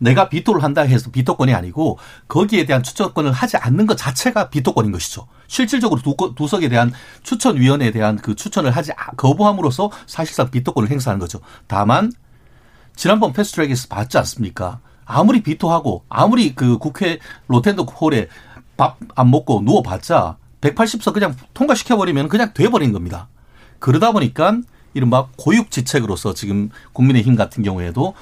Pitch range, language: 110-175 Hz, Korean